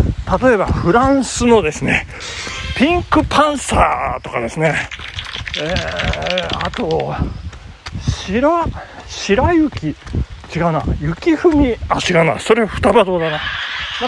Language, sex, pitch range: Japanese, male, 145-240 Hz